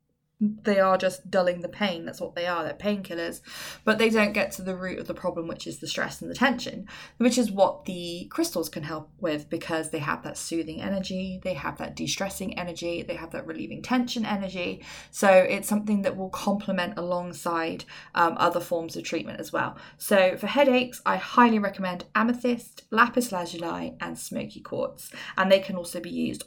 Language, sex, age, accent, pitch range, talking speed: English, female, 20-39, British, 170-210 Hz, 195 wpm